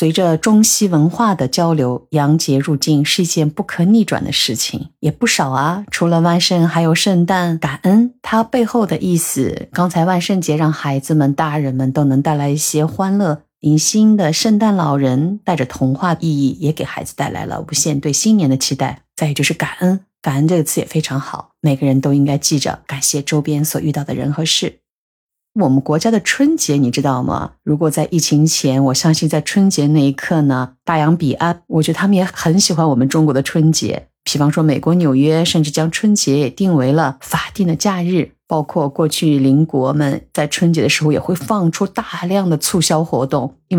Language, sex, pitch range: Chinese, female, 145-175 Hz